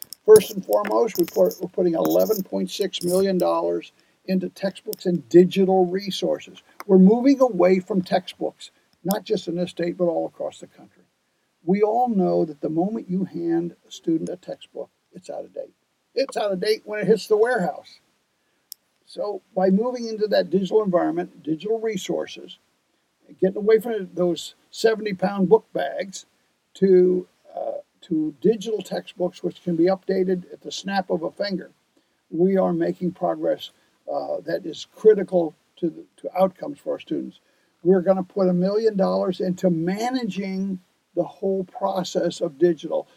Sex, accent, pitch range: male, American, 175-215 Hz